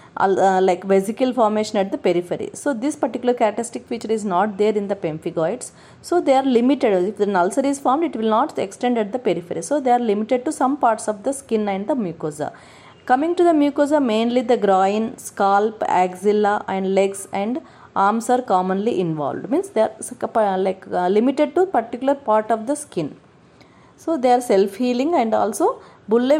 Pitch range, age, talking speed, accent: 195-255 Hz, 30-49, 185 wpm, Indian